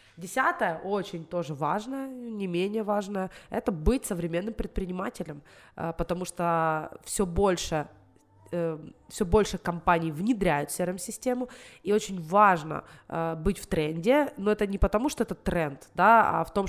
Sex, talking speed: female, 135 wpm